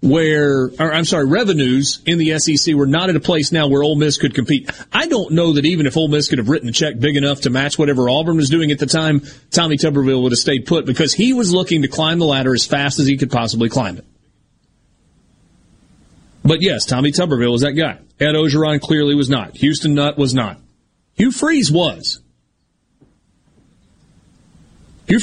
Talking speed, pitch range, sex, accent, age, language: 200 wpm, 130-165 Hz, male, American, 30-49, English